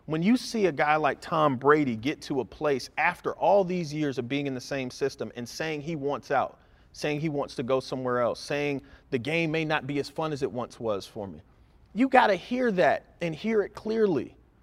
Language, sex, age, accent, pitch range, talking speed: English, male, 40-59, American, 140-195 Hz, 235 wpm